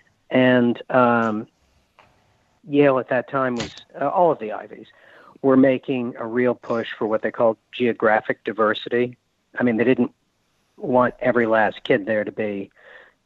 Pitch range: 110-130 Hz